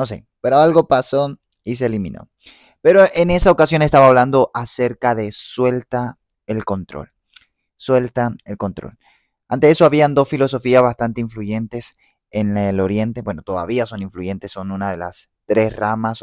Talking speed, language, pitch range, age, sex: 155 wpm, Spanish, 100-125 Hz, 20-39, male